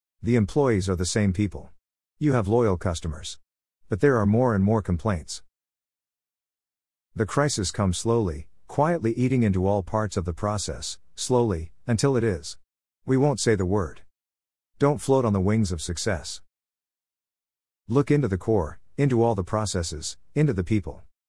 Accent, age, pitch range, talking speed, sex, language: American, 50-69, 85-115 Hz, 160 wpm, male, English